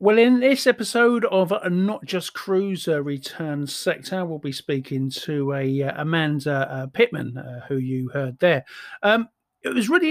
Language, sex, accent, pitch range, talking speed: English, male, British, 140-190 Hz, 160 wpm